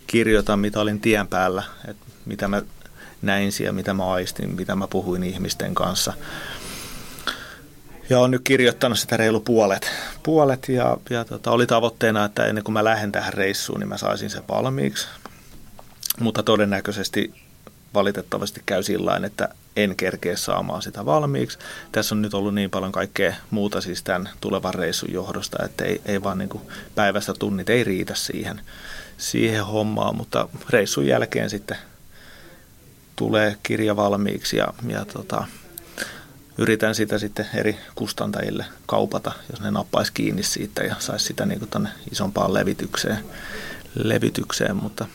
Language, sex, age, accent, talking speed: Finnish, male, 30-49, native, 145 wpm